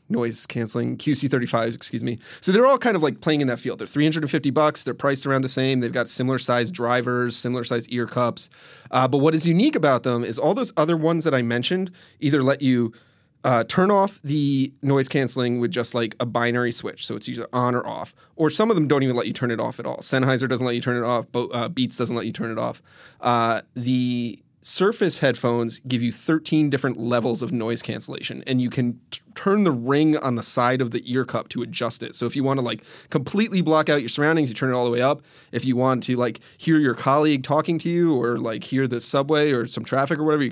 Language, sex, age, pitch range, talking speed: English, male, 30-49, 120-150 Hz, 245 wpm